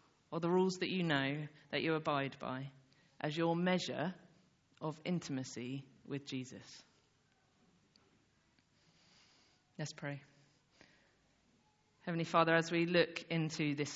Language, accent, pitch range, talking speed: English, British, 140-175 Hz, 110 wpm